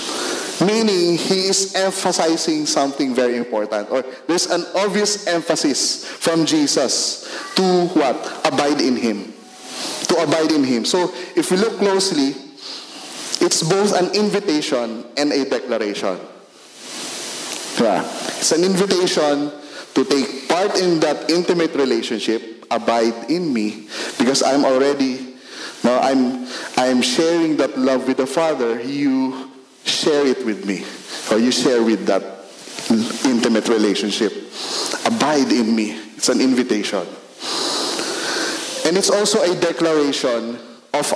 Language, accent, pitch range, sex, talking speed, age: English, Filipino, 125-180 Hz, male, 125 wpm, 20-39